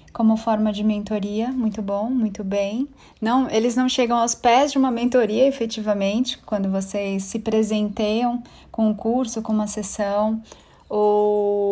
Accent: Brazilian